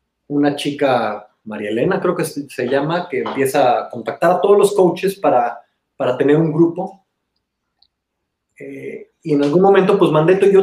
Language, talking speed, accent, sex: Spanish, 165 wpm, Mexican, male